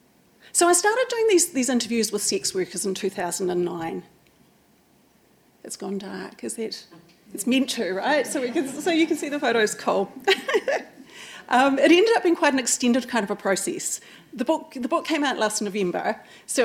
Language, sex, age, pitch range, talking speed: English, female, 40-59, 215-300 Hz, 185 wpm